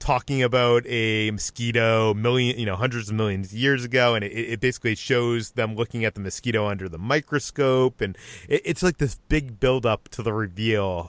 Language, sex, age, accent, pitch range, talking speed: English, male, 30-49, American, 100-125 Hz, 195 wpm